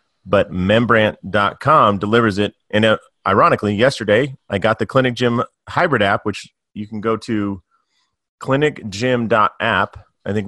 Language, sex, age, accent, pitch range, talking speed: English, male, 30-49, American, 100-120 Hz, 130 wpm